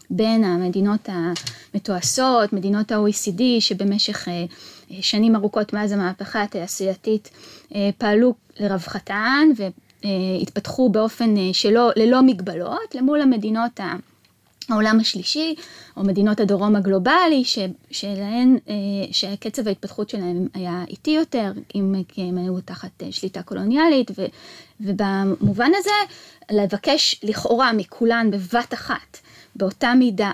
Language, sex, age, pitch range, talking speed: English, female, 20-39, 195-250 Hz, 110 wpm